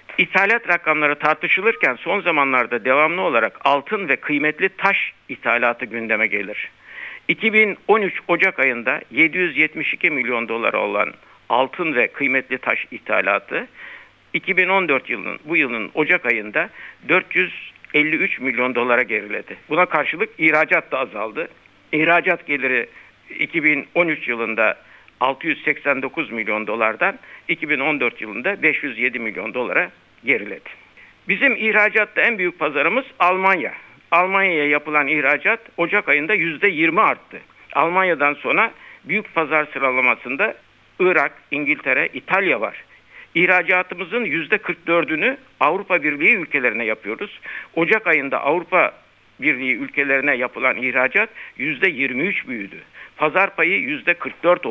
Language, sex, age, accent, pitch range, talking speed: Turkish, male, 60-79, native, 135-190 Hz, 105 wpm